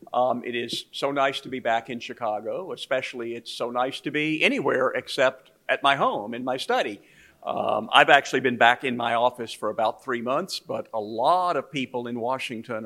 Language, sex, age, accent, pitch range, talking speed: English, male, 50-69, American, 120-140 Hz, 200 wpm